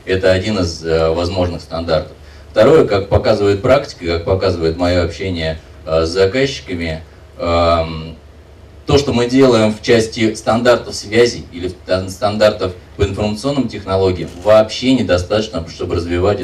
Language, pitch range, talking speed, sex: Russian, 85-105 Hz, 115 wpm, male